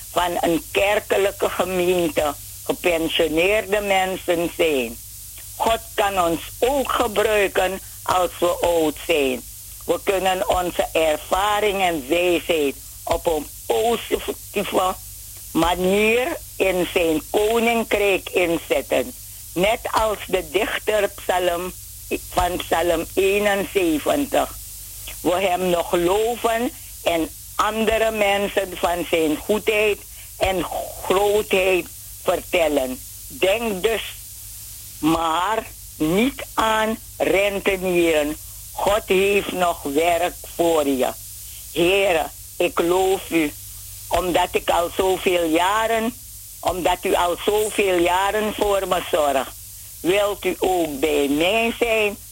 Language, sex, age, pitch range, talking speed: Dutch, female, 50-69, 150-205 Hz, 95 wpm